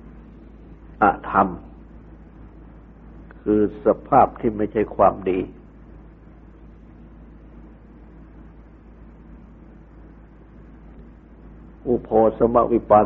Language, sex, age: Thai, male, 60-79